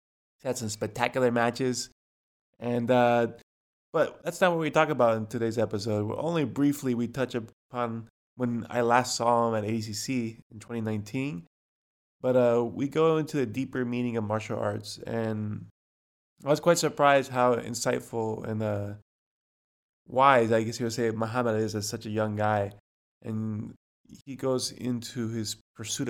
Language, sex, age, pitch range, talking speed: English, male, 20-39, 110-125 Hz, 160 wpm